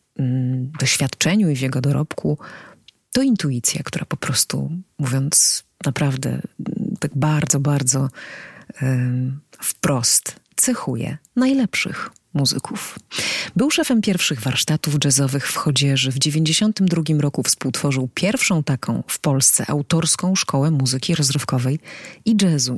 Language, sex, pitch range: Polish, female, 135-160 Hz